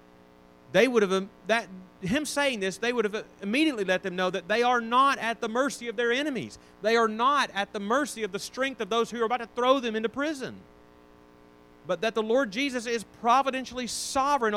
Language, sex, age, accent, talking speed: English, male, 40-59, American, 210 wpm